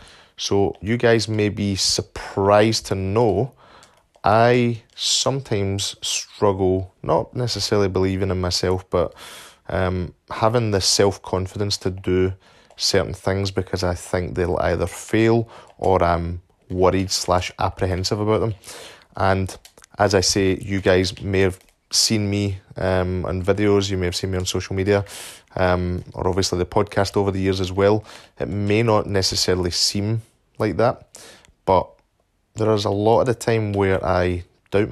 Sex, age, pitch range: male, 20-39, 95-105 Hz